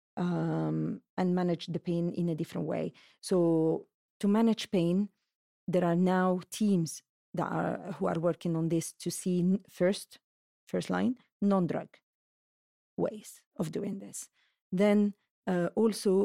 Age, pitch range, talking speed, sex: 40-59, 170-205 Hz, 135 wpm, female